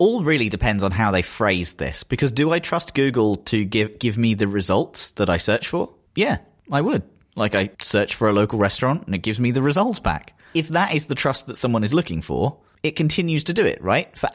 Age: 30-49